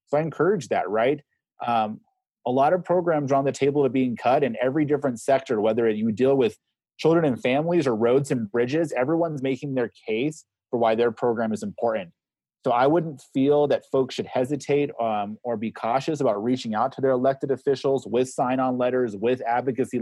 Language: English